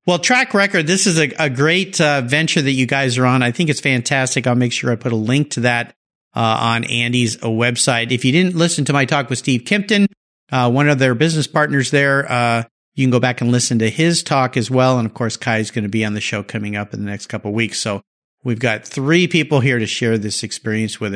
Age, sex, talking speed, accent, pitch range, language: 50-69, male, 260 wpm, American, 125-200 Hz, English